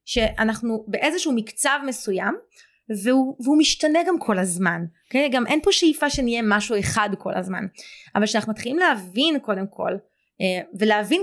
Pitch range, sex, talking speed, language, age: 200-265 Hz, female, 145 wpm, Hebrew, 20-39